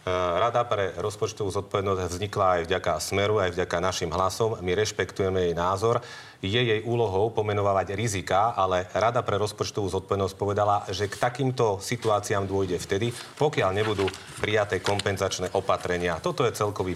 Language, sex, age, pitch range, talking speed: Slovak, male, 30-49, 90-105 Hz, 145 wpm